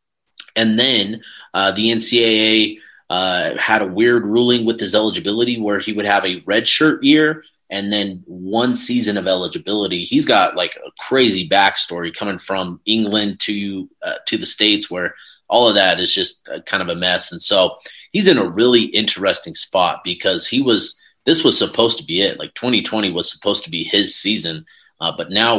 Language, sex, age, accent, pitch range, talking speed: English, male, 30-49, American, 95-115 Hz, 190 wpm